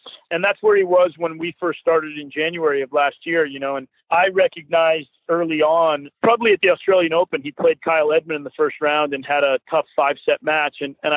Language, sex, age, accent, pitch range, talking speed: English, male, 40-59, American, 145-170 Hz, 230 wpm